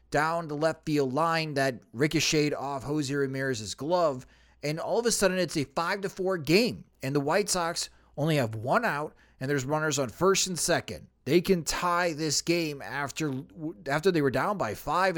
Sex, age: male, 30-49